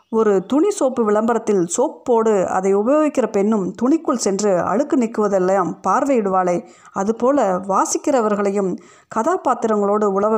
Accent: native